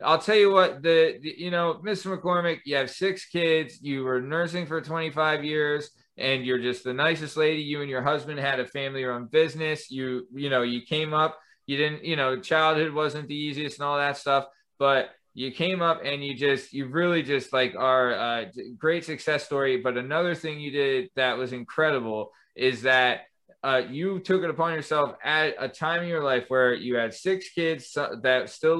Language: English